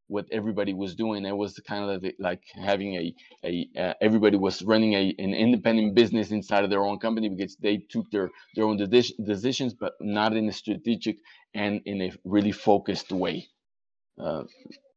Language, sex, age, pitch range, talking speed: English, male, 30-49, 100-115 Hz, 175 wpm